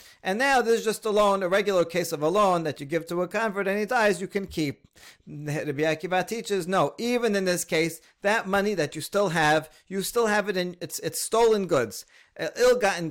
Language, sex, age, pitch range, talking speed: English, male, 40-59, 155-200 Hz, 215 wpm